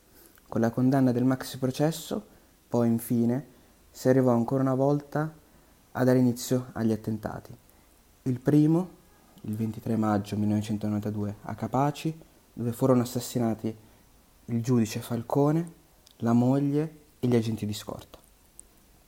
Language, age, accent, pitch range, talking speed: Italian, 30-49, native, 110-130 Hz, 125 wpm